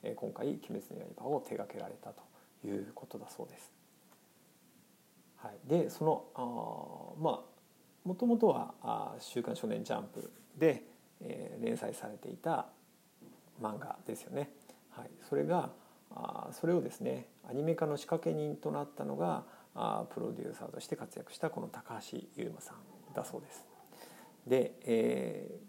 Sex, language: male, Japanese